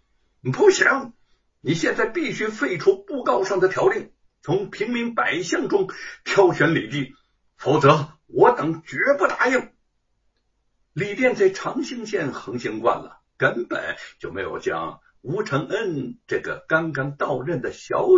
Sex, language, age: male, Chinese, 60-79